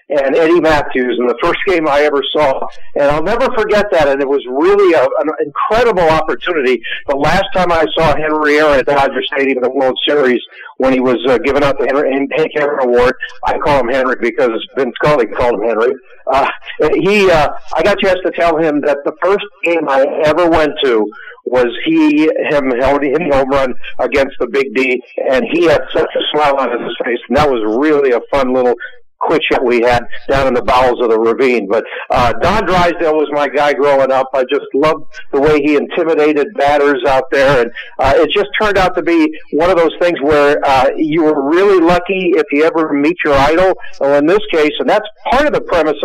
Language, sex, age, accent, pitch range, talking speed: English, male, 50-69, American, 145-210 Hz, 220 wpm